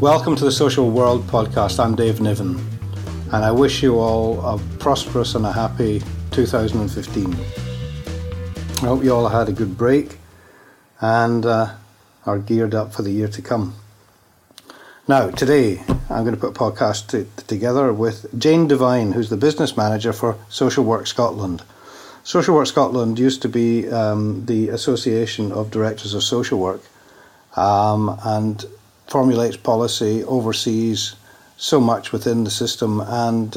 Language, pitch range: English, 100-120 Hz